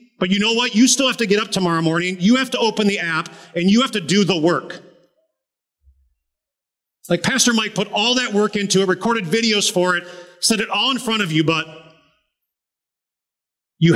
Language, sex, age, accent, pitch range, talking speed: English, male, 40-59, American, 160-225 Hz, 200 wpm